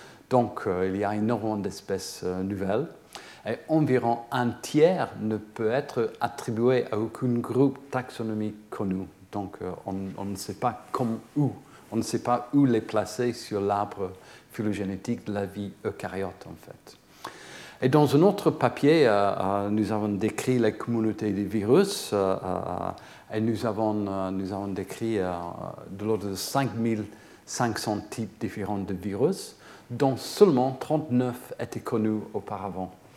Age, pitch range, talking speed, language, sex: 50-69, 100-120 Hz, 155 wpm, French, male